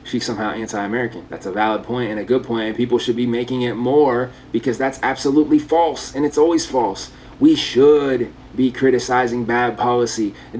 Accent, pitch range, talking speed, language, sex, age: American, 130-165 Hz, 180 wpm, English, male, 30-49